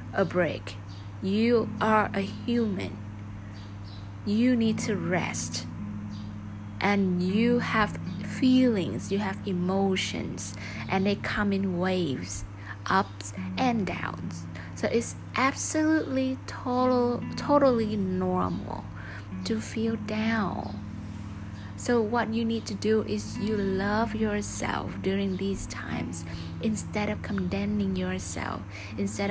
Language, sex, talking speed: Vietnamese, female, 105 wpm